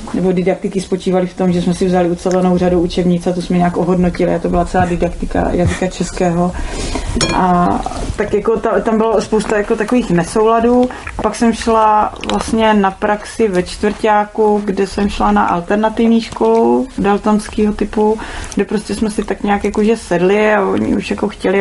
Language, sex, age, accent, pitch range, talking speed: Czech, female, 30-49, native, 195-230 Hz, 180 wpm